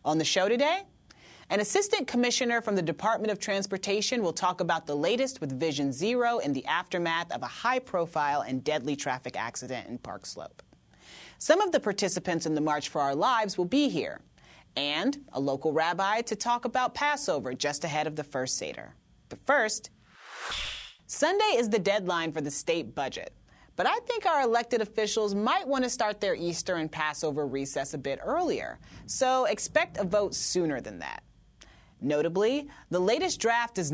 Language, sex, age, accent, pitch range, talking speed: English, female, 30-49, American, 155-245 Hz, 175 wpm